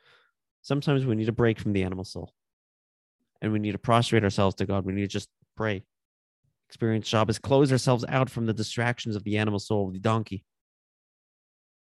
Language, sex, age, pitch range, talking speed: English, male, 30-49, 100-130 Hz, 180 wpm